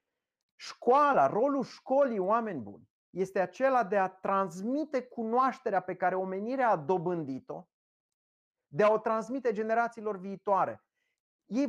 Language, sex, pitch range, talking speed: English, male, 190-255 Hz, 120 wpm